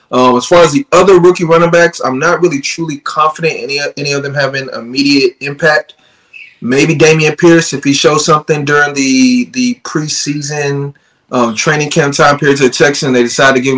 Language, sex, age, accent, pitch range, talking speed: English, male, 30-49, American, 120-145 Hz, 195 wpm